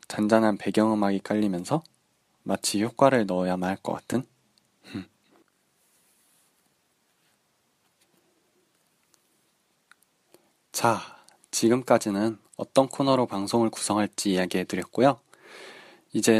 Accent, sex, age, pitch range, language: native, male, 20-39, 95-130 Hz, Korean